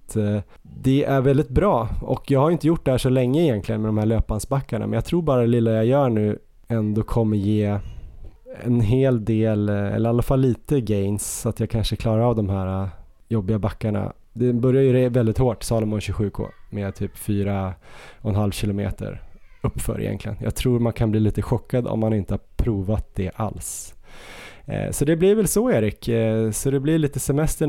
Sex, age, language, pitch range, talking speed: male, 20-39, Swedish, 105-130 Hz, 190 wpm